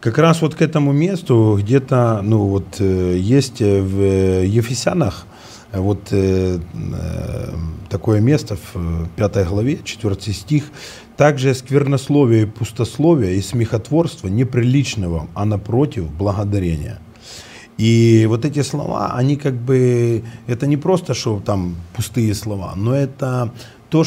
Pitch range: 105-140 Hz